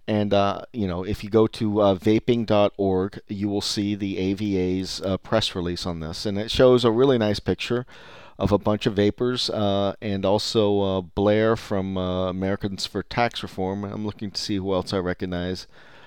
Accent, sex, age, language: American, male, 40-59, English